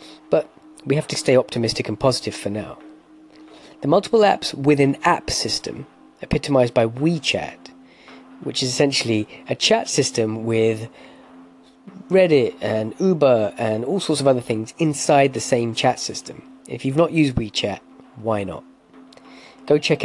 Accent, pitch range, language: British, 115-170 Hz, English